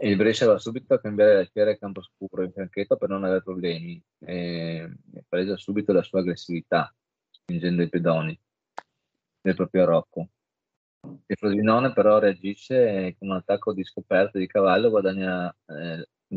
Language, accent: Italian, native